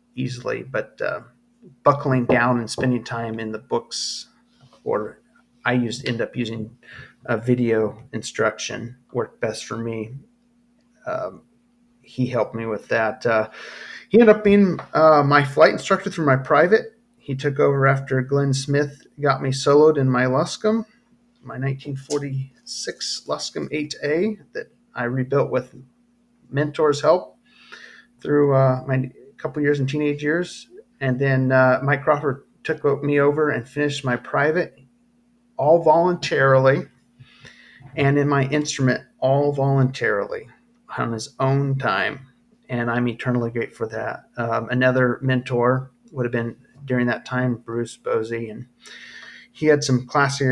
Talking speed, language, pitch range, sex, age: 140 wpm, English, 125-150 Hz, male, 30-49